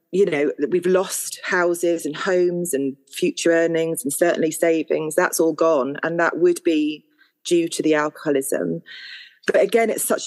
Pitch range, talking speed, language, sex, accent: 160-215 Hz, 170 wpm, English, female, British